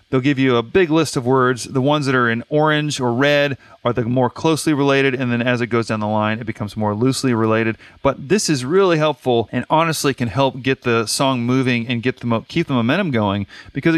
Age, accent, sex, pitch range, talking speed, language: 30-49, American, male, 120-155 Hz, 240 wpm, English